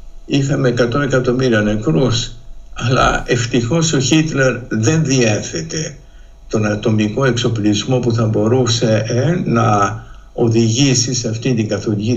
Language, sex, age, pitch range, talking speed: Greek, male, 60-79, 115-150 Hz, 115 wpm